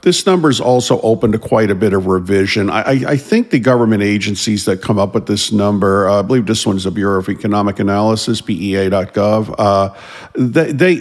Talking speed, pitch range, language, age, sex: 200 wpm, 100-130 Hz, English, 50-69, male